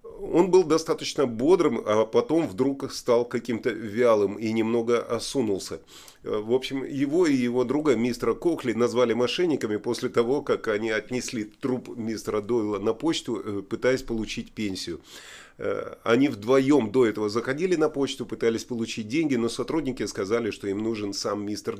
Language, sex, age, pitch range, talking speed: Russian, male, 30-49, 110-135 Hz, 150 wpm